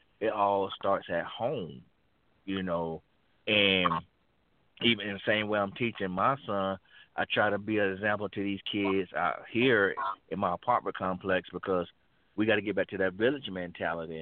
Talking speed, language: 175 wpm, English